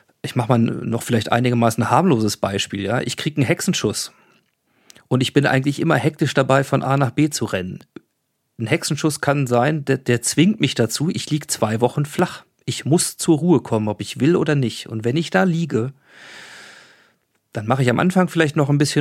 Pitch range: 120-150 Hz